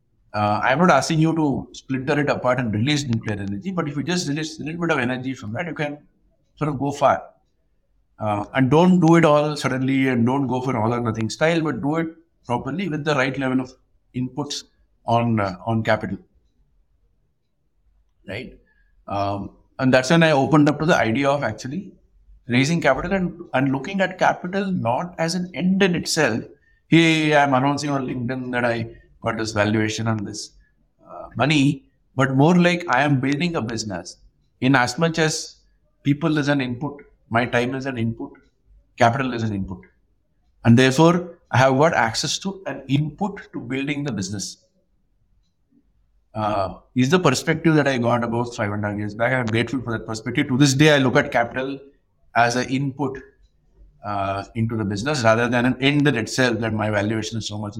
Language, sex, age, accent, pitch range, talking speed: English, male, 60-79, Indian, 110-150 Hz, 185 wpm